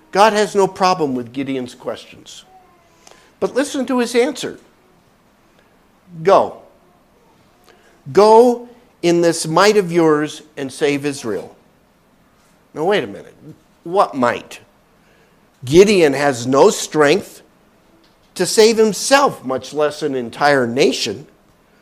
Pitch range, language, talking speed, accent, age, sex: 135-190 Hz, English, 110 wpm, American, 60-79, male